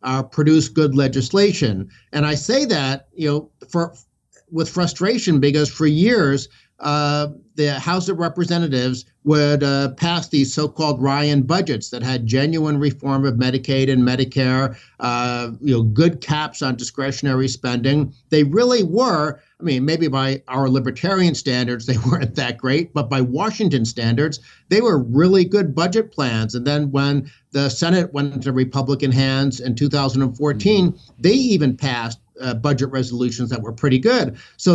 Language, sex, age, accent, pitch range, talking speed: English, male, 60-79, American, 130-165 Hz, 155 wpm